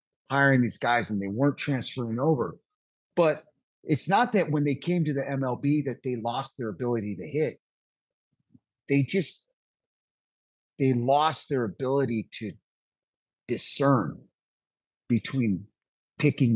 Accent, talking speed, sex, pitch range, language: American, 125 wpm, male, 110-140 Hz, English